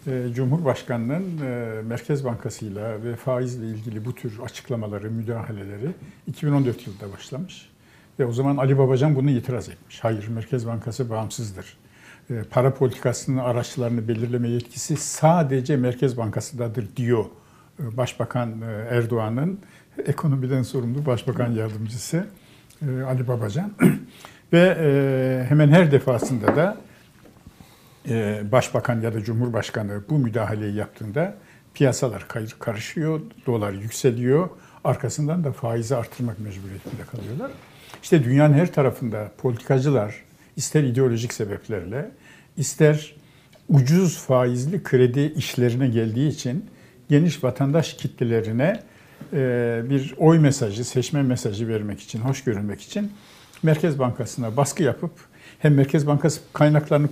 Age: 60-79